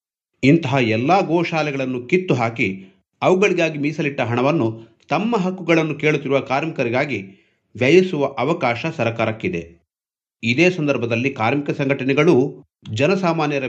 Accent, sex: native, male